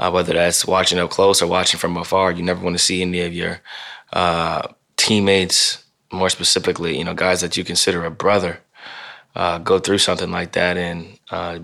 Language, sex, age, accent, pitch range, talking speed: English, male, 20-39, American, 85-95 Hz, 195 wpm